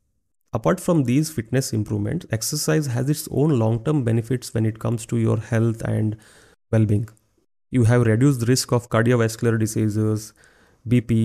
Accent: native